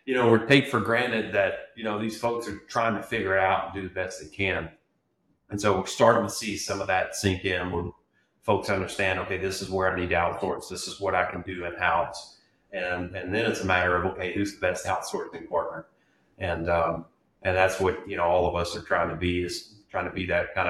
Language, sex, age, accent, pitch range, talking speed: English, male, 30-49, American, 90-100 Hz, 245 wpm